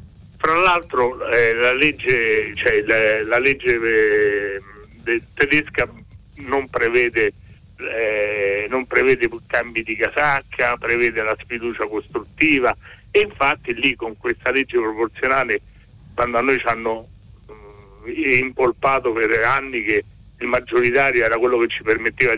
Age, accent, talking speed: 60-79, native, 105 wpm